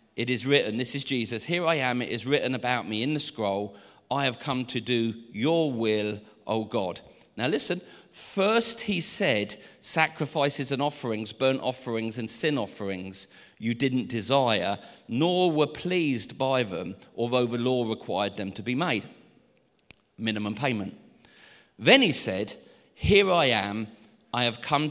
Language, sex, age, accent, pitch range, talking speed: English, male, 40-59, British, 115-155 Hz, 160 wpm